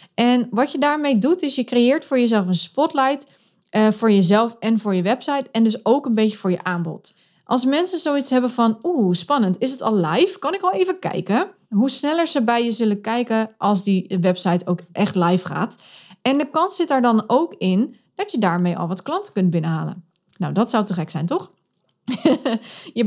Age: 20-39